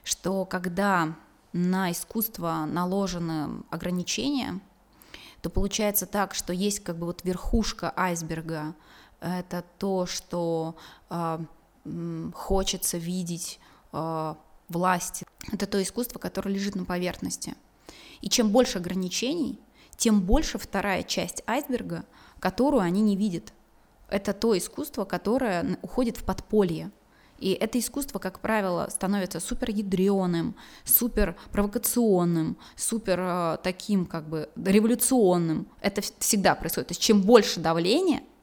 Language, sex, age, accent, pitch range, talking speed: Russian, female, 20-39, native, 180-225 Hz, 115 wpm